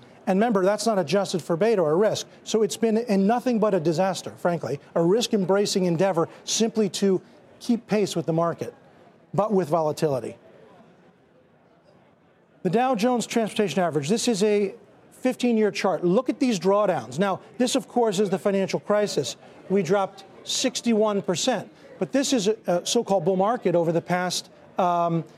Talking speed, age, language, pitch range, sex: 160 wpm, 40-59, English, 190-235 Hz, male